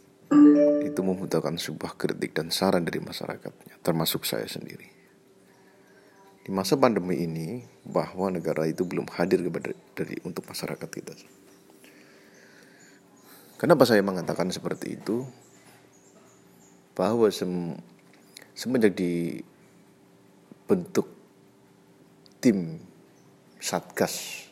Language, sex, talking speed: Indonesian, male, 90 wpm